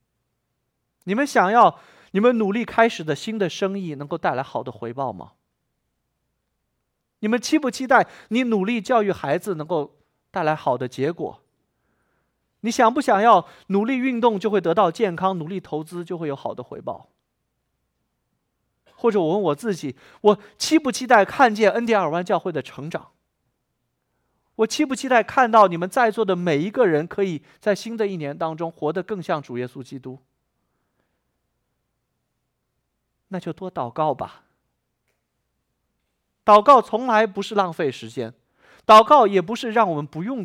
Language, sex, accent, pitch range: Chinese, male, native, 140-220 Hz